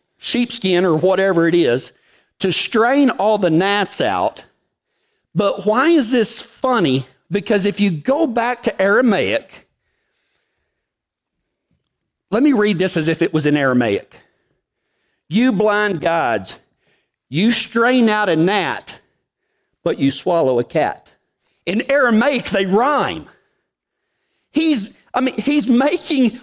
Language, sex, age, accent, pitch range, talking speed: English, male, 50-69, American, 195-280 Hz, 125 wpm